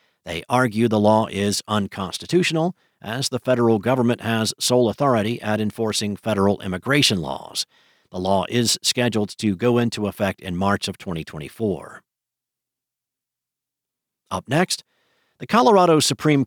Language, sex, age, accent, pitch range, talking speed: English, male, 50-69, American, 105-135 Hz, 130 wpm